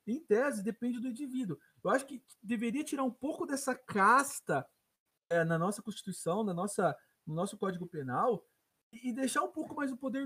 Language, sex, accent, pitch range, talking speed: Portuguese, male, Brazilian, 205-255 Hz, 180 wpm